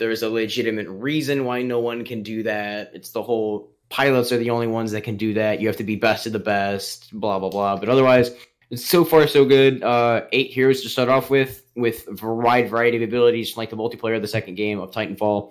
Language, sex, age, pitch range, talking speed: English, male, 10-29, 110-130 Hz, 240 wpm